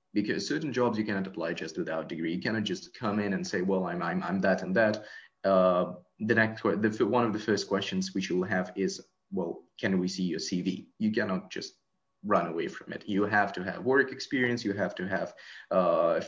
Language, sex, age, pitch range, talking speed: English, male, 20-39, 95-120 Hz, 230 wpm